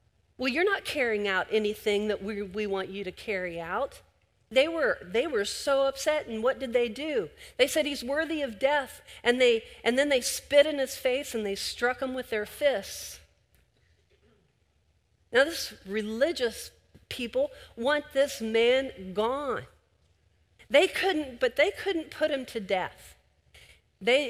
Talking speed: 160 wpm